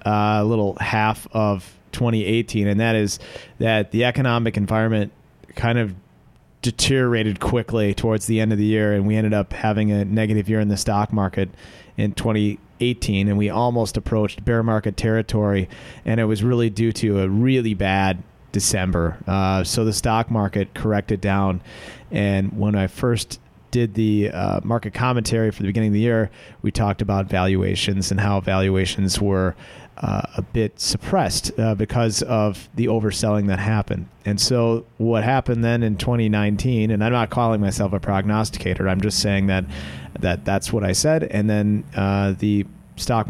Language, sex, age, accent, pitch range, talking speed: English, male, 30-49, American, 100-115 Hz, 175 wpm